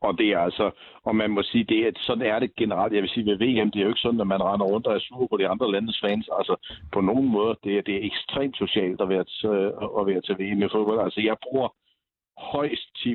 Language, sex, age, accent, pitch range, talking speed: Danish, male, 60-79, native, 100-115 Hz, 275 wpm